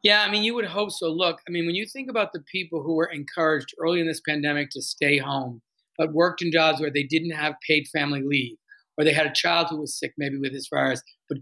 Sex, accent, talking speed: male, American, 265 wpm